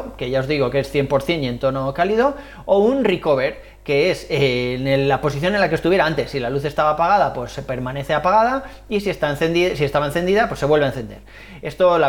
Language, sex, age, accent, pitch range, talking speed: Spanish, male, 30-49, Spanish, 135-170 Hz, 235 wpm